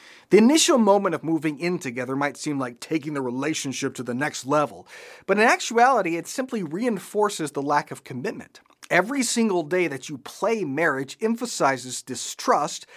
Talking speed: 165 wpm